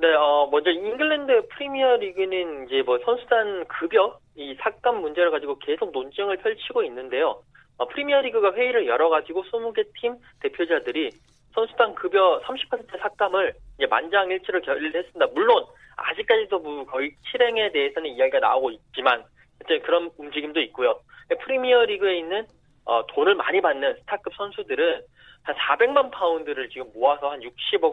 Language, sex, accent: Korean, male, native